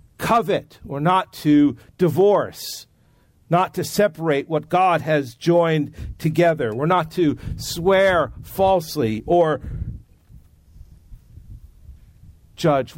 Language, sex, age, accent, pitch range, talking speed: English, male, 50-69, American, 115-165 Hz, 95 wpm